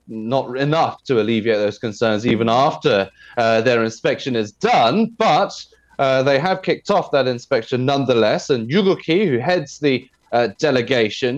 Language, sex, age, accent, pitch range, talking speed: English, male, 30-49, British, 130-190 Hz, 155 wpm